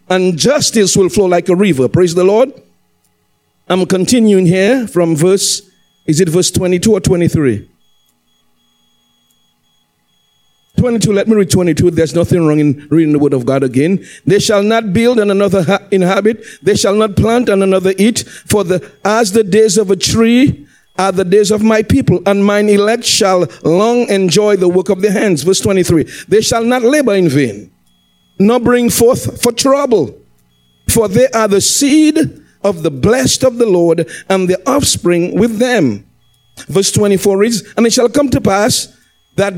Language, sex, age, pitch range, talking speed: English, male, 50-69, 170-220 Hz, 175 wpm